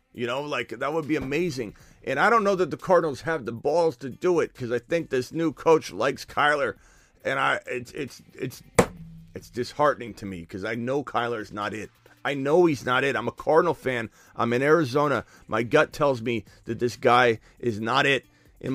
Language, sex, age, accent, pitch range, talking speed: English, male, 30-49, American, 115-140 Hz, 215 wpm